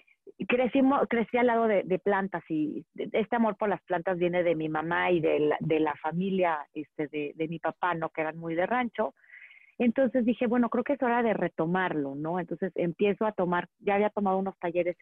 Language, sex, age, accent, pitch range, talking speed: Spanish, female, 40-59, Mexican, 180-245 Hz, 210 wpm